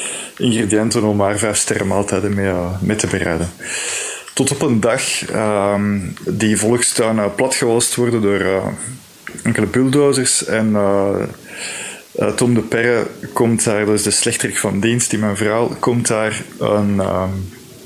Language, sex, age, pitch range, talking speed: Dutch, male, 20-39, 100-115 Hz, 140 wpm